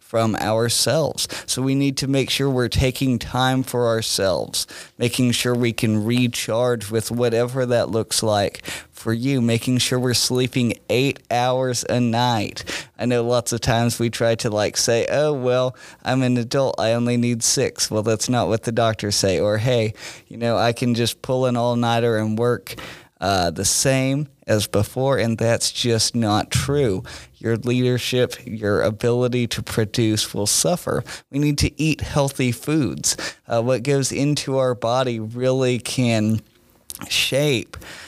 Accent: American